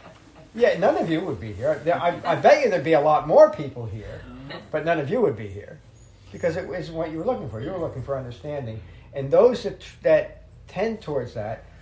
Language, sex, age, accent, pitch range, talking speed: English, male, 50-69, American, 110-150 Hz, 215 wpm